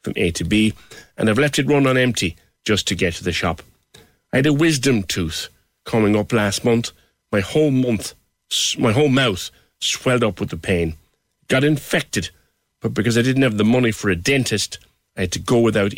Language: English